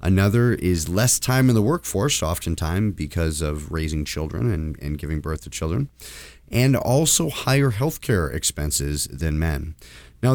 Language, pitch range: English, 80-110 Hz